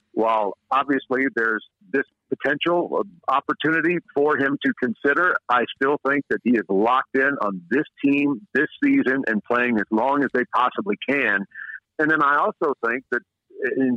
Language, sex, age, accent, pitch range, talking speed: English, male, 50-69, American, 120-145 Hz, 165 wpm